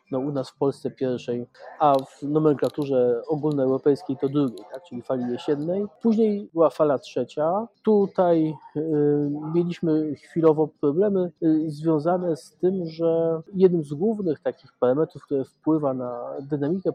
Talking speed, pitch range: 130 wpm, 140-175 Hz